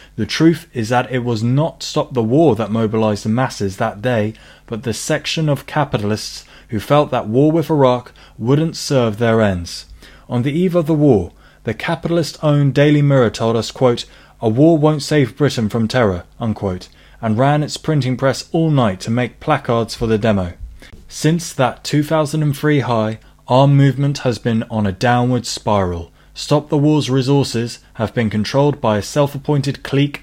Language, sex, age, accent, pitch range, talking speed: English, male, 20-39, British, 110-145 Hz, 170 wpm